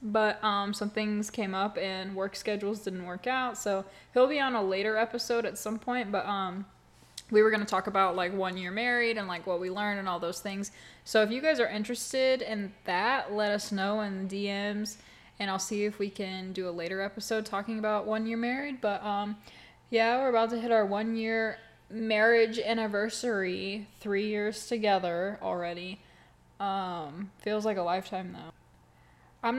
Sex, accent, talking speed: female, American, 195 wpm